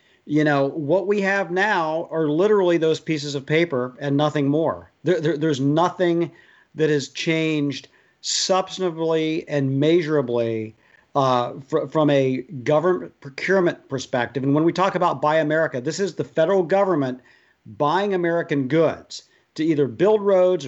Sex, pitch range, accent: male, 140-175 Hz, American